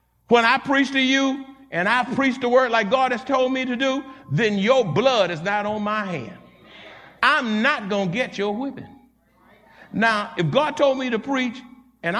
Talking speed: 195 wpm